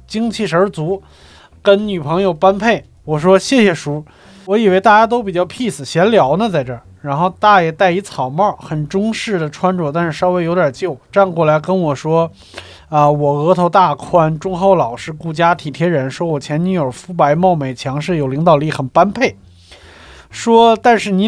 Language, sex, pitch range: Chinese, male, 145-195 Hz